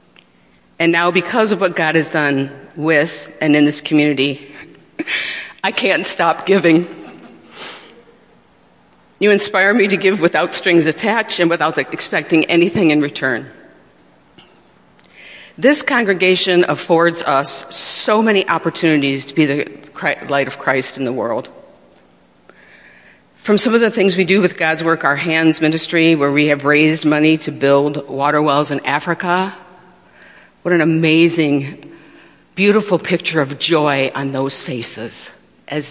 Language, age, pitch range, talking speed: English, 50-69, 135-170 Hz, 135 wpm